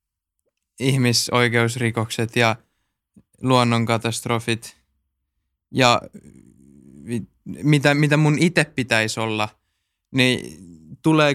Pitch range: 110-140 Hz